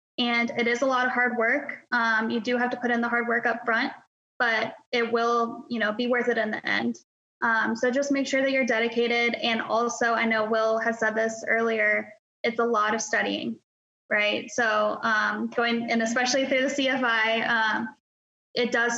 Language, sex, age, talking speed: English, female, 10-29, 205 wpm